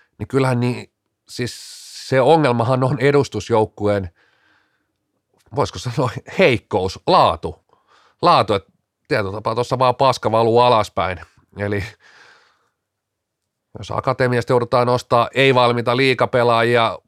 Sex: male